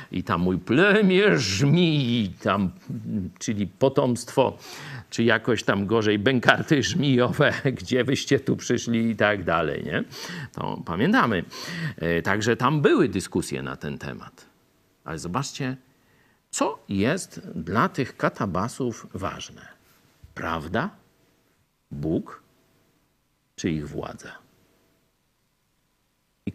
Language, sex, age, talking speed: Polish, male, 50-69, 100 wpm